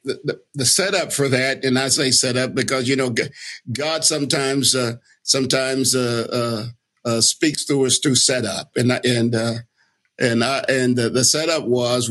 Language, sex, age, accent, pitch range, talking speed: English, male, 50-69, American, 120-135 Hz, 175 wpm